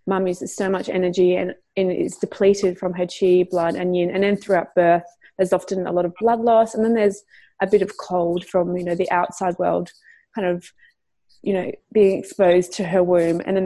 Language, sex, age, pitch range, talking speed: English, female, 20-39, 180-200 Hz, 220 wpm